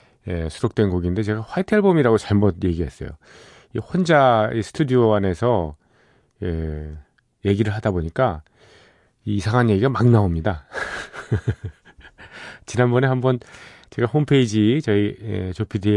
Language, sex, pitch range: Korean, male, 90-120 Hz